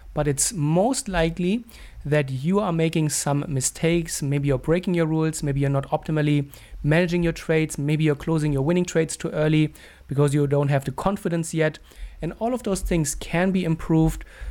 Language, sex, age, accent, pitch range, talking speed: English, male, 30-49, German, 145-175 Hz, 185 wpm